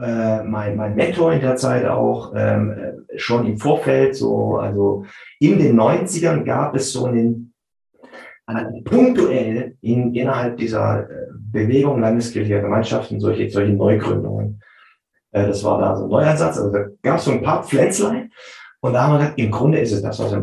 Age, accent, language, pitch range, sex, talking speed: 30-49, German, German, 105-135 Hz, male, 180 wpm